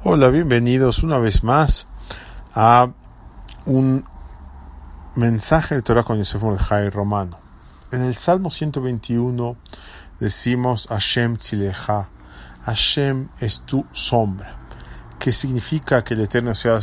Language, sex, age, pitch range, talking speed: English, male, 40-59, 95-125 Hz, 110 wpm